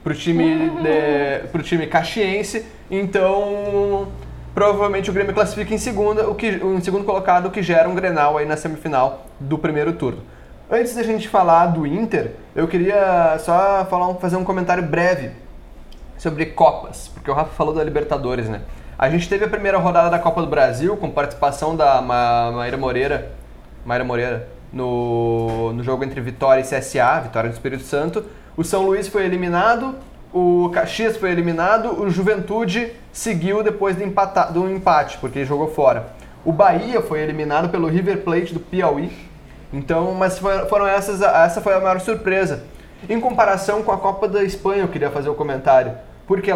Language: Portuguese